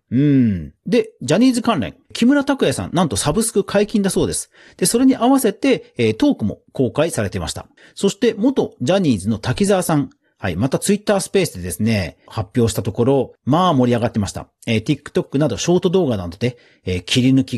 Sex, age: male, 40-59